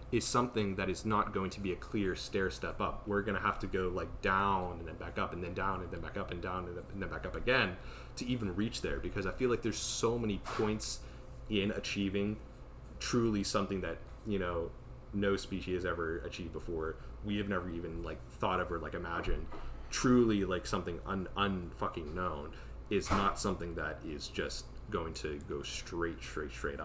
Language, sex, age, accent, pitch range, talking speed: English, male, 30-49, American, 80-100 Hz, 205 wpm